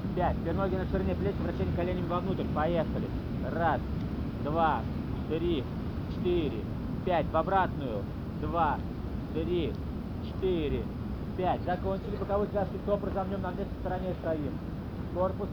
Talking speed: 120 wpm